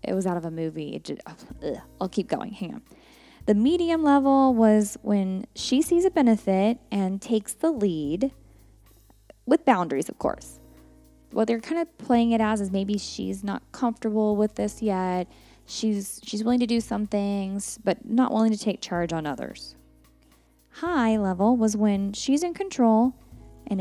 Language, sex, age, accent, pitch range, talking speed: English, female, 10-29, American, 185-265 Hz, 165 wpm